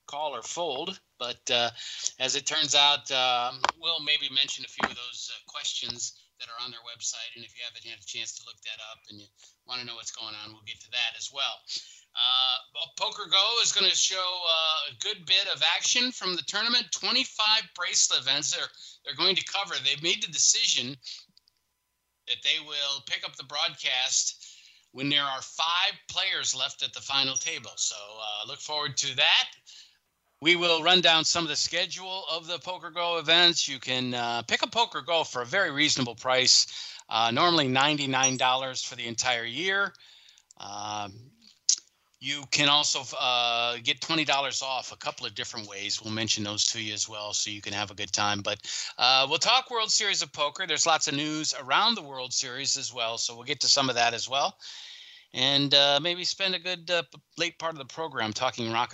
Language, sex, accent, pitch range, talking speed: English, male, American, 115-165 Hz, 205 wpm